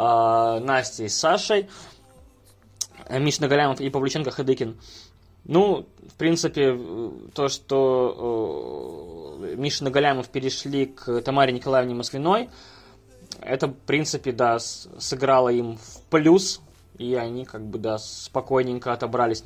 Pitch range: 120-150 Hz